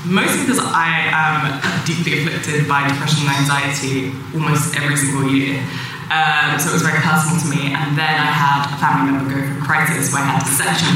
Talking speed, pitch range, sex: 210 wpm, 145-175 Hz, female